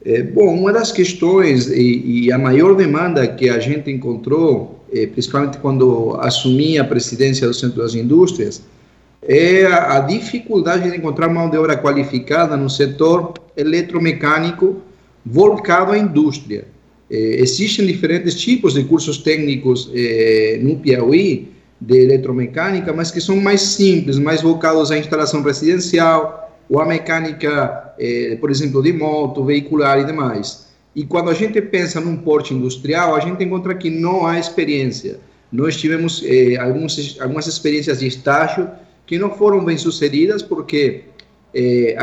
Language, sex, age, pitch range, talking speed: Portuguese, male, 40-59, 135-175 Hz, 145 wpm